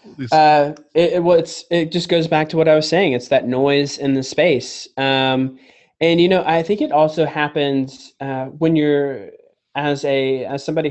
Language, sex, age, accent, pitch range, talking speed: English, male, 20-39, American, 135-170 Hz, 195 wpm